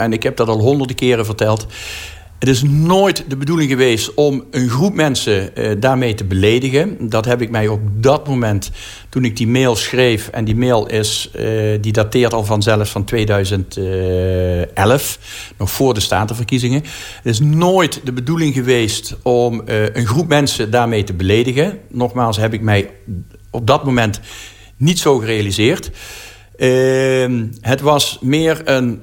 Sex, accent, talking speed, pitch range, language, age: male, Dutch, 160 wpm, 105-130 Hz, Dutch, 50-69